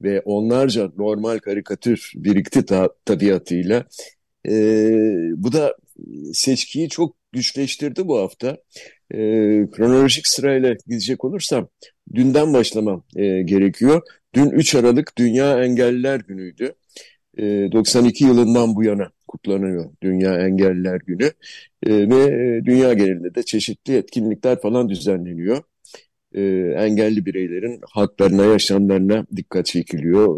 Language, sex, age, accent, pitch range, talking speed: Turkish, male, 60-79, native, 100-130 Hz, 105 wpm